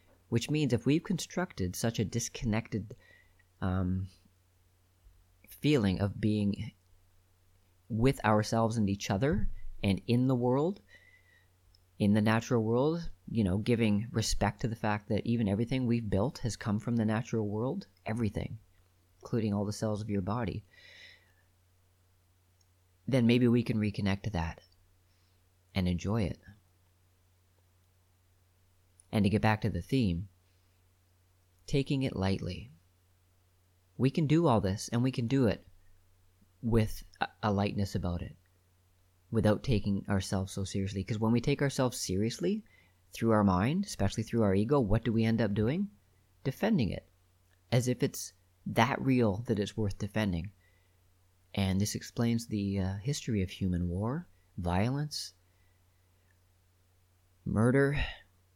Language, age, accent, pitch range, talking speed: English, 30-49, American, 90-115 Hz, 135 wpm